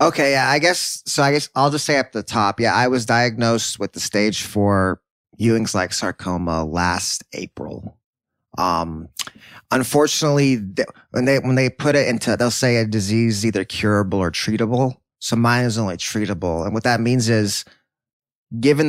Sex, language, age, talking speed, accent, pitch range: male, English, 20-39, 165 wpm, American, 100-125 Hz